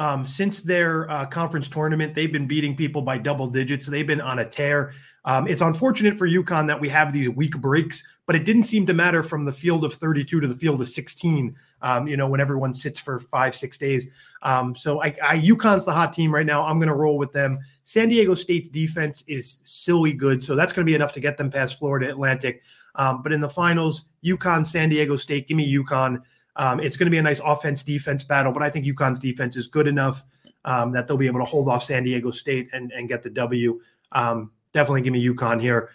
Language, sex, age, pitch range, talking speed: English, male, 30-49, 135-160 Hz, 235 wpm